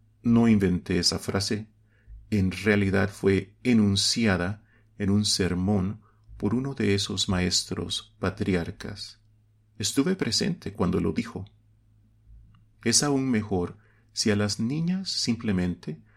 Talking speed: 110 wpm